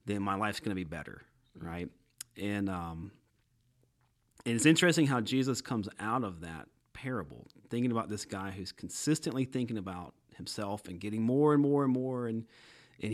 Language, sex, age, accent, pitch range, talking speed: English, male, 30-49, American, 100-130 Hz, 175 wpm